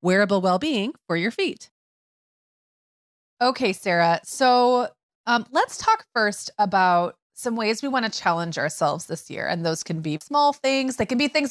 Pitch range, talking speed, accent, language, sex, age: 170-230 Hz, 170 wpm, American, English, female, 30-49